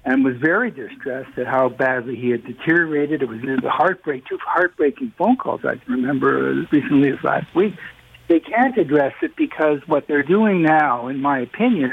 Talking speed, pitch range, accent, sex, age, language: 195 wpm, 130-195 Hz, American, male, 60-79, English